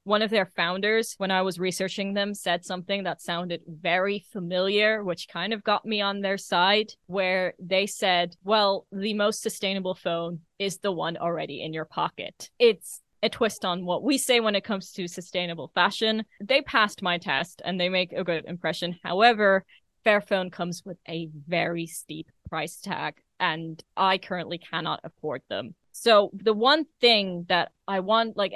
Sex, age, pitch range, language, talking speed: female, 20-39, 175-215 Hz, English, 175 wpm